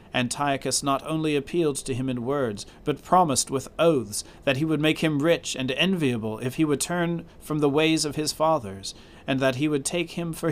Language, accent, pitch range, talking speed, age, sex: English, American, 110-150 Hz, 210 wpm, 40-59, male